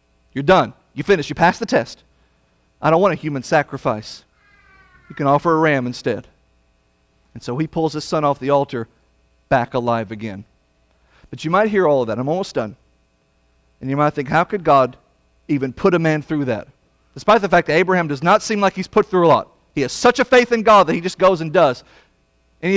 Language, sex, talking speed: English, male, 220 wpm